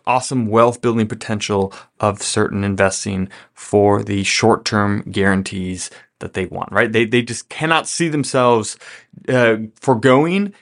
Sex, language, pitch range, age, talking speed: male, English, 110-140 Hz, 20-39, 125 wpm